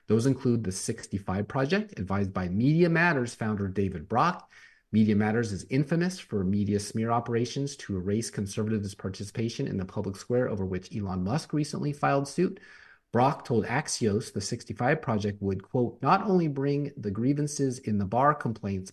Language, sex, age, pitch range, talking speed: English, male, 30-49, 100-135 Hz, 165 wpm